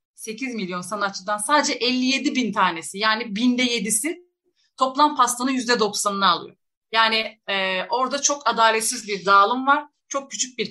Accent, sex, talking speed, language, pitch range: native, female, 140 wpm, Turkish, 200-250 Hz